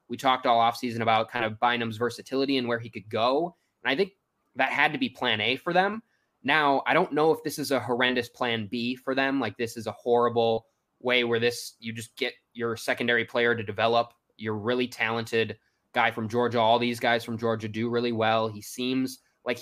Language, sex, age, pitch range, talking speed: English, male, 20-39, 115-130 Hz, 215 wpm